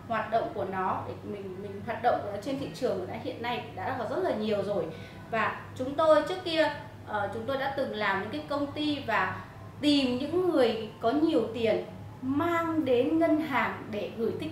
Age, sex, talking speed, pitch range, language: 20-39, female, 205 wpm, 225-295 Hz, Vietnamese